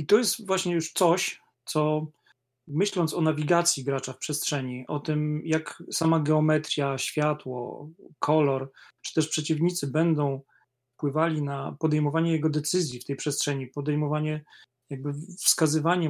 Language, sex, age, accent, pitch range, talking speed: Polish, male, 40-59, native, 140-165 Hz, 130 wpm